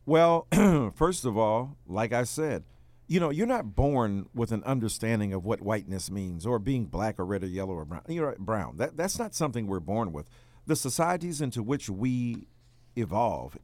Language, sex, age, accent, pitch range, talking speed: English, male, 50-69, American, 110-135 Hz, 190 wpm